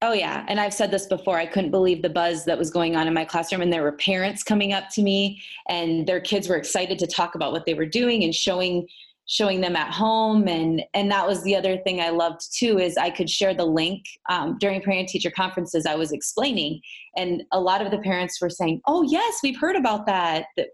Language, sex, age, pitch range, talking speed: English, female, 20-39, 170-200 Hz, 245 wpm